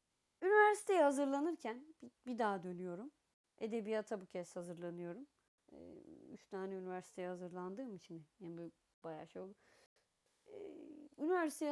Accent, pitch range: native, 195-310 Hz